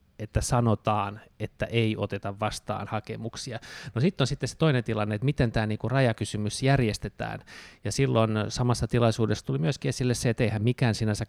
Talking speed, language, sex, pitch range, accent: 165 wpm, Finnish, male, 110-125 Hz, native